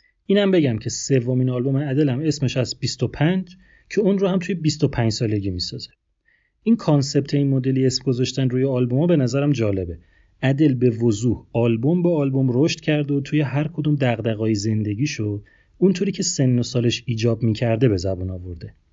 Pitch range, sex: 110-150 Hz, male